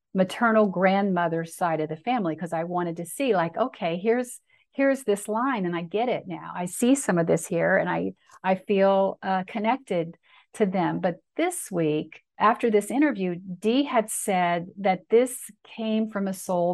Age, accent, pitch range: 50-69, American, 180-215 Hz